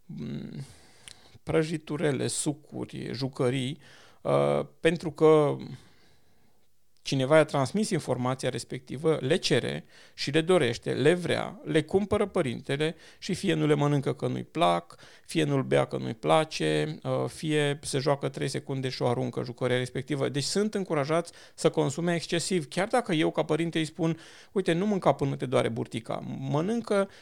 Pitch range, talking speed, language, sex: 130-170 Hz, 145 wpm, Romanian, male